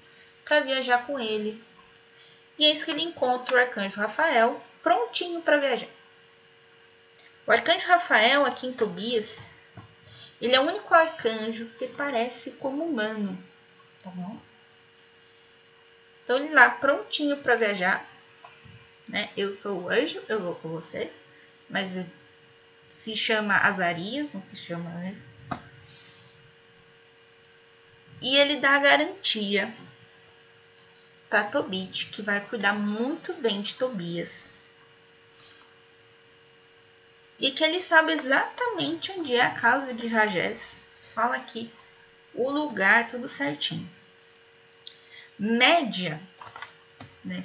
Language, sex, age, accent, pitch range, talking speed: Portuguese, female, 10-29, Brazilian, 170-275 Hz, 115 wpm